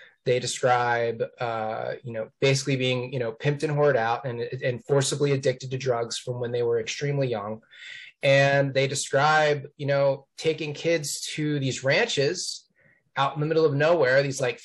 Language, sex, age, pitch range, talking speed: English, male, 20-39, 125-145 Hz, 175 wpm